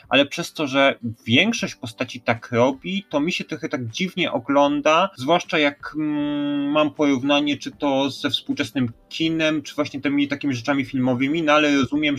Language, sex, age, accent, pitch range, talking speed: Polish, male, 30-49, native, 120-145 Hz, 165 wpm